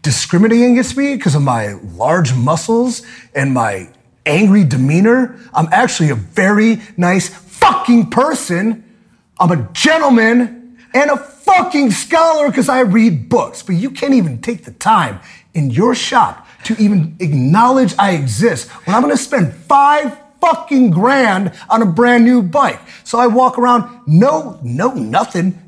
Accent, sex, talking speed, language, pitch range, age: American, male, 150 wpm, English, 165-245 Hz, 30-49